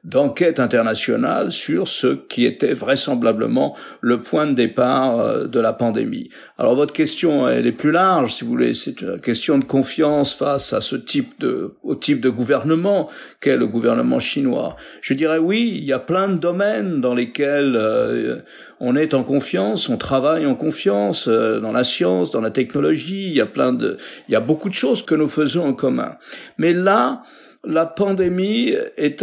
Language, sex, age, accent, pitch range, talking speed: French, male, 50-69, French, 140-185 Hz, 180 wpm